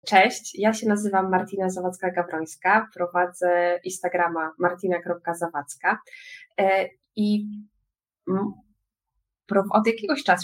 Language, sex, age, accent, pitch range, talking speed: Polish, female, 20-39, native, 175-220 Hz, 80 wpm